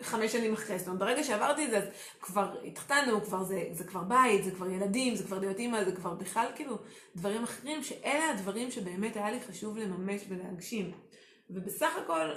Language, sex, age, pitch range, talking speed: Hebrew, female, 30-49, 195-235 Hz, 195 wpm